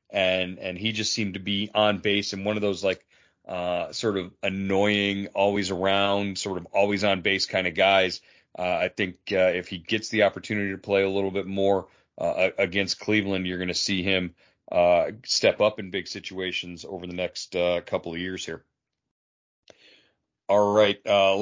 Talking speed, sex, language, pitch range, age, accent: 190 wpm, male, English, 95-105 Hz, 40-59, American